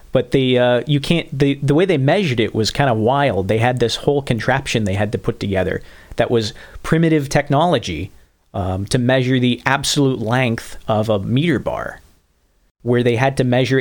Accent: American